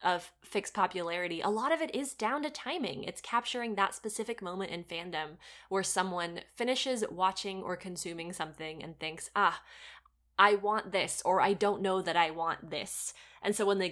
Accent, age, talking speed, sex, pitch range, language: American, 20-39, 185 wpm, female, 185-250 Hz, English